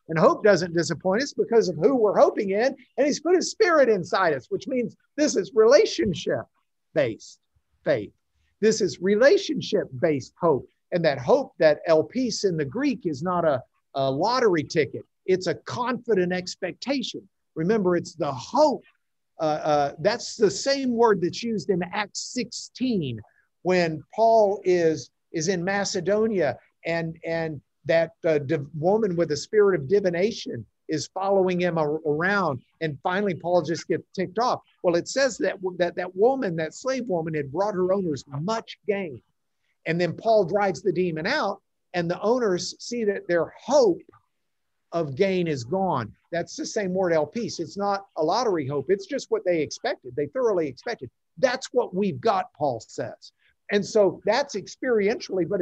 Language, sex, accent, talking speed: English, male, American, 165 wpm